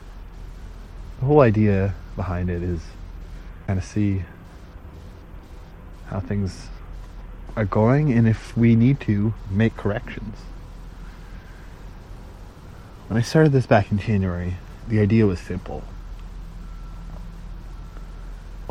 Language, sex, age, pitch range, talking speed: English, male, 30-49, 85-105 Hz, 105 wpm